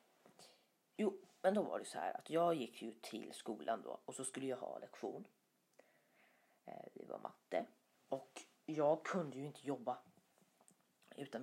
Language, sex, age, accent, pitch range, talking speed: Swedish, female, 30-49, native, 130-200 Hz, 160 wpm